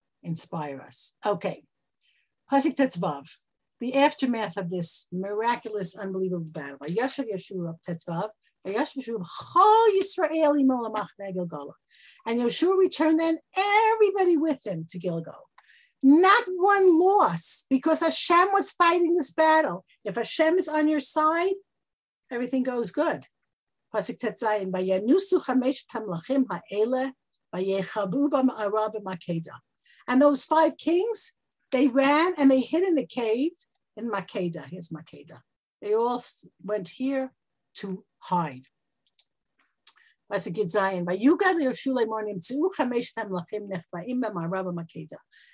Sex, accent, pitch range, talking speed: female, American, 190-305 Hz, 95 wpm